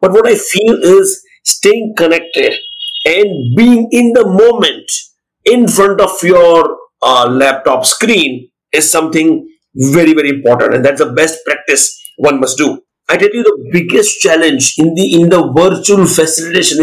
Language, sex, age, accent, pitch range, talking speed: English, male, 50-69, Indian, 155-255 Hz, 155 wpm